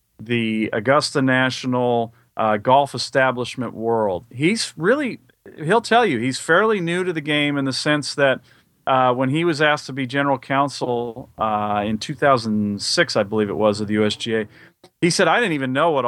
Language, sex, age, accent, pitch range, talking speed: English, male, 40-59, American, 120-145 Hz, 170 wpm